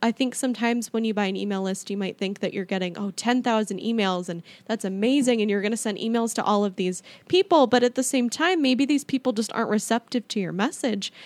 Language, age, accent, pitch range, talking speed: English, 10-29, American, 200-245 Hz, 245 wpm